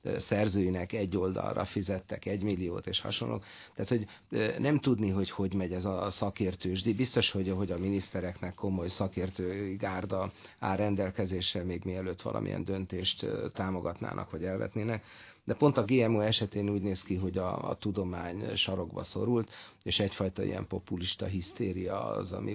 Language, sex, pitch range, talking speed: Hungarian, male, 90-105 Hz, 150 wpm